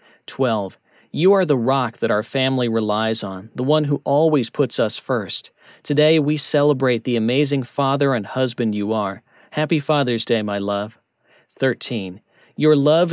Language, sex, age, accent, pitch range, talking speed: English, male, 40-59, American, 115-150 Hz, 160 wpm